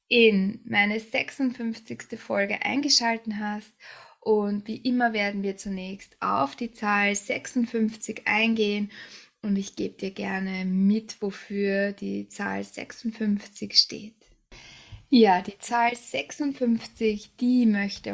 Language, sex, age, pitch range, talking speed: German, female, 10-29, 200-235 Hz, 115 wpm